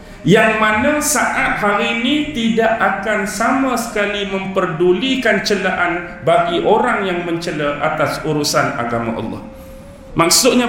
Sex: male